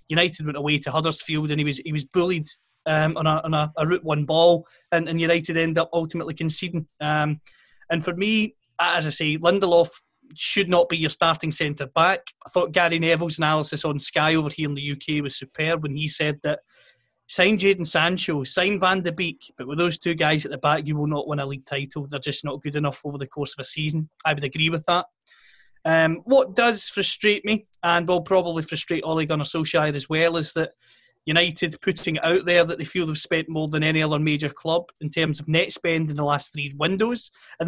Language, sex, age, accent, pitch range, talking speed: English, male, 30-49, British, 150-175 Hz, 220 wpm